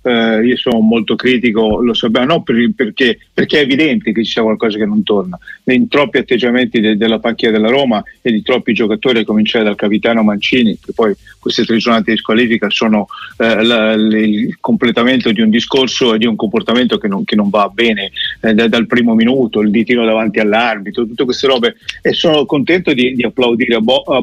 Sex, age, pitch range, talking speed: male, 40-59, 115-135 Hz, 205 wpm